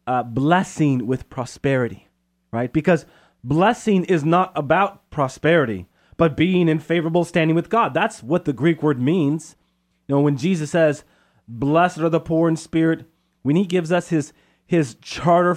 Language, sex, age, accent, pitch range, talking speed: English, male, 30-49, American, 130-180 Hz, 160 wpm